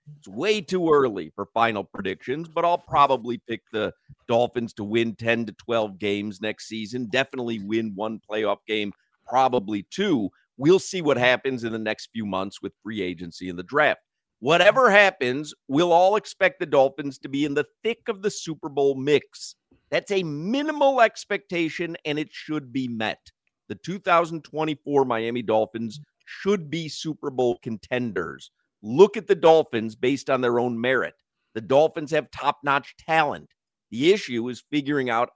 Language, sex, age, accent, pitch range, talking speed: English, male, 50-69, American, 110-150 Hz, 165 wpm